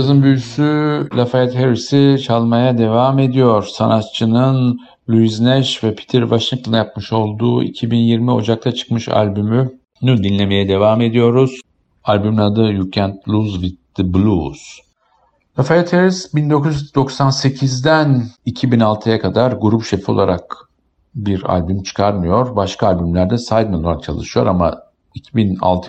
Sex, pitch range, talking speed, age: male, 95-120 Hz, 110 wpm, 50-69